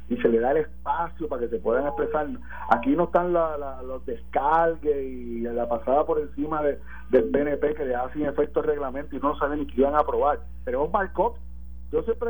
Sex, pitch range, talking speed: male, 135-215 Hz, 220 wpm